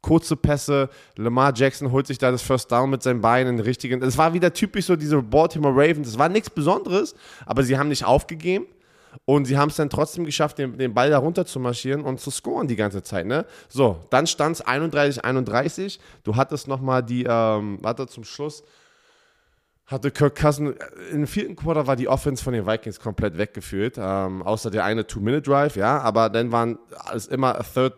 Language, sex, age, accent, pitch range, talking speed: German, male, 20-39, German, 105-135 Hz, 195 wpm